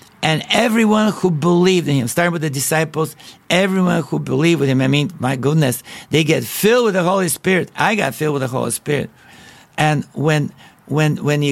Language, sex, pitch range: English, male, 140-175 Hz